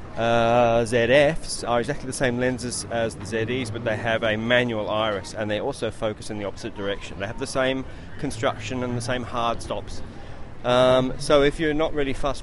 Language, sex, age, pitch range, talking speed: English, male, 30-49, 110-130 Hz, 200 wpm